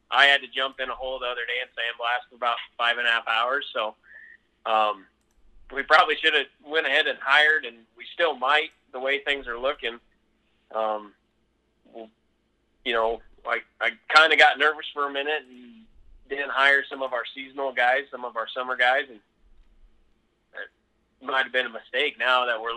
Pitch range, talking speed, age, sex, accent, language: 115-140 Hz, 195 wpm, 30-49, male, American, English